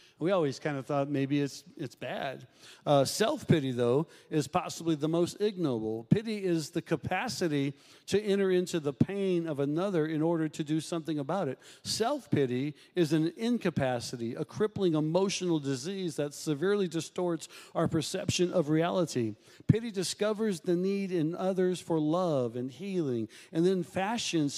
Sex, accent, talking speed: male, American, 155 wpm